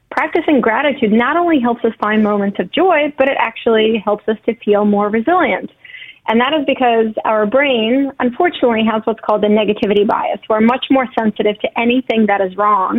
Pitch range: 210-265 Hz